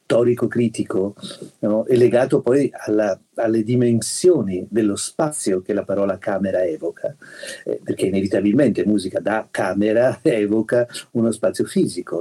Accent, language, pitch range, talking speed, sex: native, Italian, 105-125 Hz, 130 wpm, male